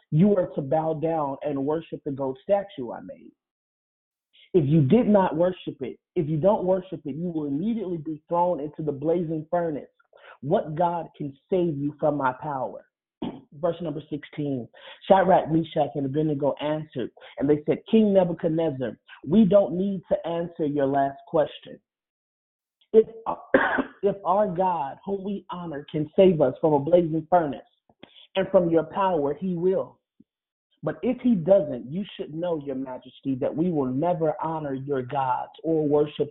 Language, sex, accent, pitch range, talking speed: English, male, American, 150-185 Hz, 160 wpm